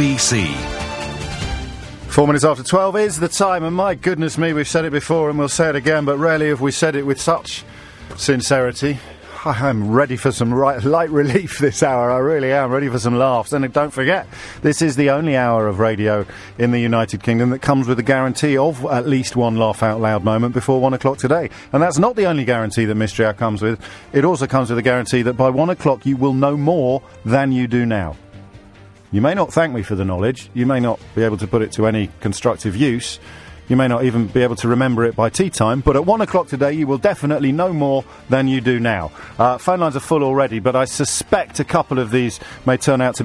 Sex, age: male, 40-59